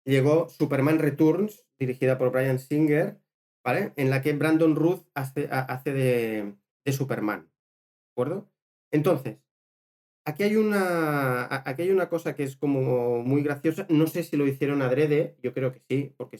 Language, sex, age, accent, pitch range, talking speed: Spanish, male, 30-49, Spanish, 120-155 Hz, 160 wpm